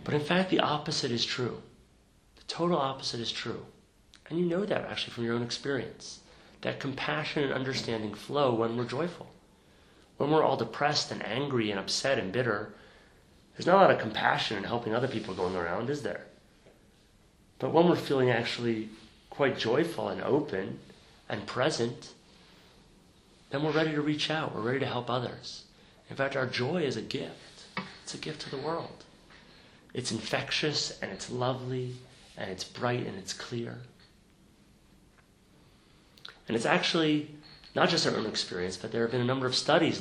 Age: 30-49